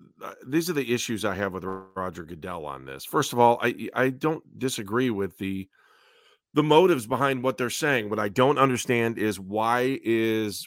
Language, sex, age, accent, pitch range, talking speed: English, male, 40-59, American, 105-130 Hz, 185 wpm